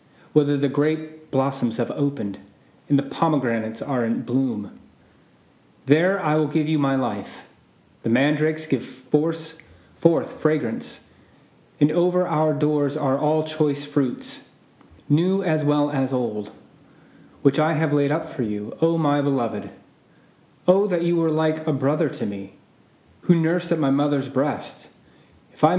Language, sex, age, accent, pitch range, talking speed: English, male, 30-49, American, 125-155 Hz, 155 wpm